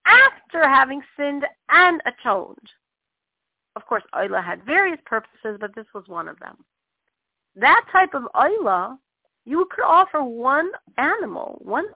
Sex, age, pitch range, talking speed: female, 40-59, 235-365 Hz, 135 wpm